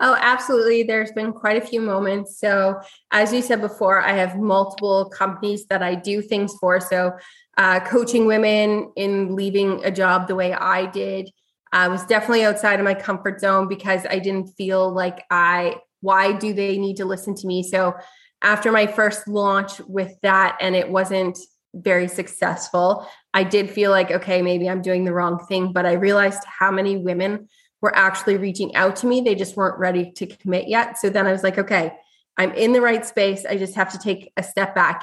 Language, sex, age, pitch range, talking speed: English, female, 20-39, 185-210 Hz, 200 wpm